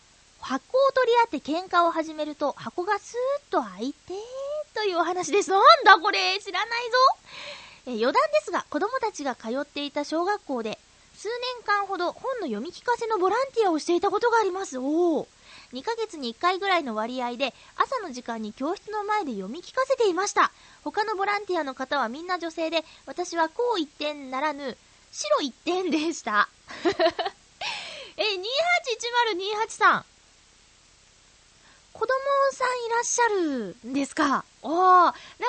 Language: Japanese